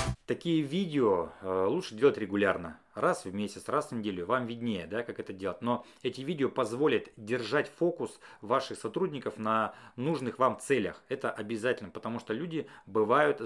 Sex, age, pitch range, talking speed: male, 30-49, 115-160 Hz, 155 wpm